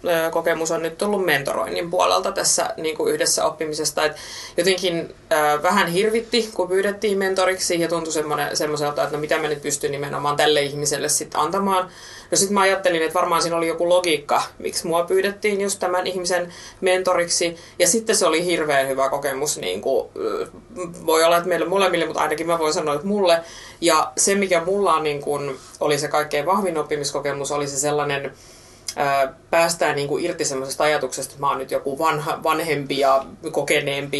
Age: 30-49